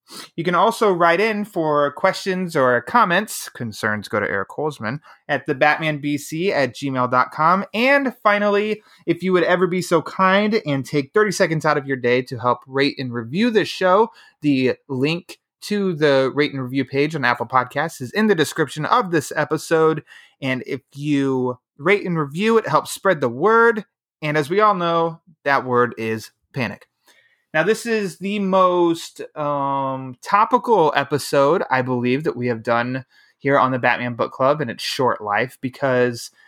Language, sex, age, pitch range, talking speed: English, male, 30-49, 130-180 Hz, 175 wpm